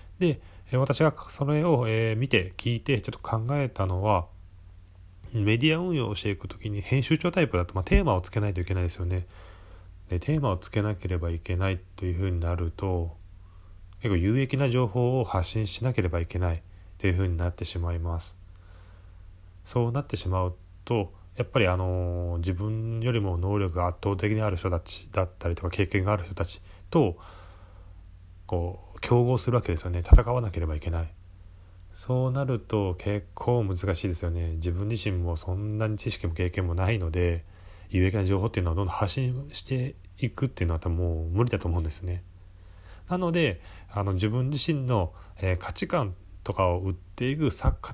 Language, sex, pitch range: Japanese, male, 90-110 Hz